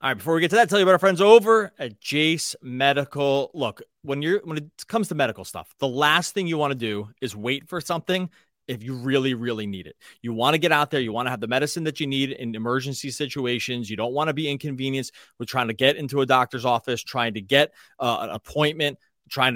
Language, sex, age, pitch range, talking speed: English, male, 30-49, 120-145 Hz, 250 wpm